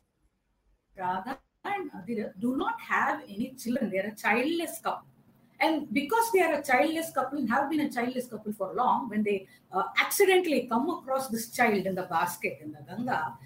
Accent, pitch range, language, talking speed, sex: native, 225-335 Hz, Hindi, 185 wpm, female